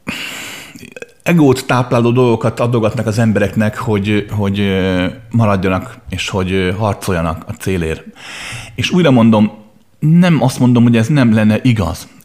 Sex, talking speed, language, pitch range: male, 120 wpm, Hungarian, 95-125 Hz